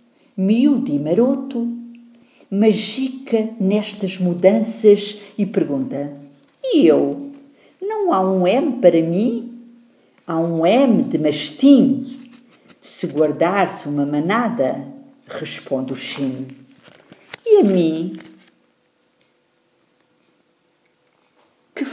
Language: English